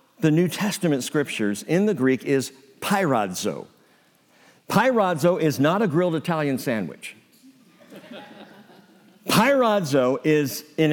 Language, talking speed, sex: English, 105 wpm, male